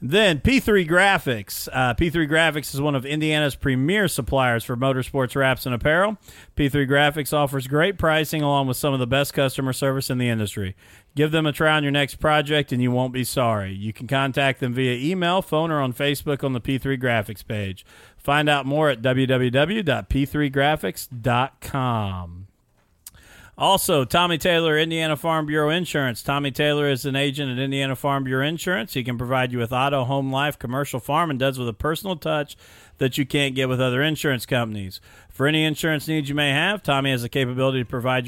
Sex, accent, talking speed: male, American, 190 wpm